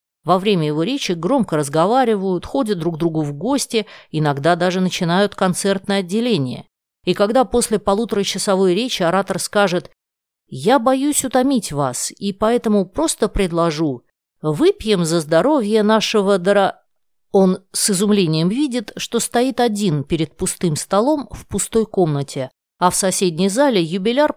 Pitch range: 165-220 Hz